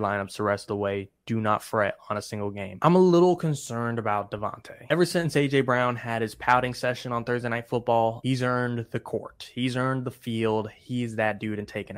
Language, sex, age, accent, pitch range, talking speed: English, male, 20-39, American, 110-125 Hz, 220 wpm